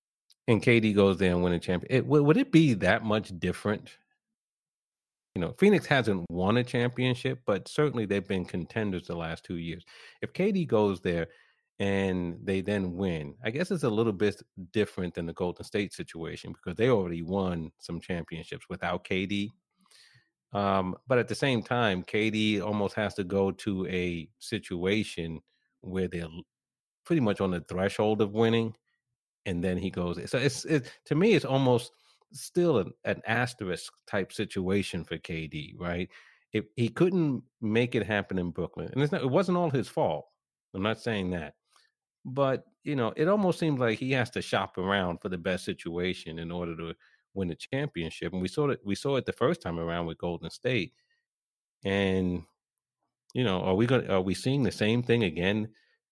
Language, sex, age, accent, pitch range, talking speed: English, male, 30-49, American, 90-125 Hz, 180 wpm